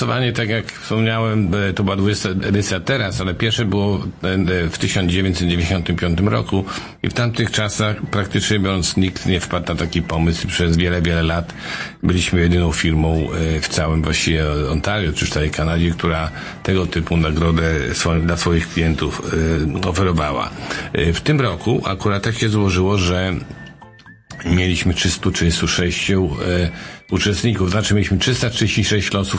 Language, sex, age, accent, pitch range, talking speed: Polish, male, 50-69, native, 85-100 Hz, 130 wpm